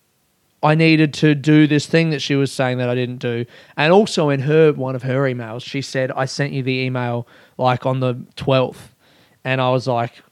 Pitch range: 125-160 Hz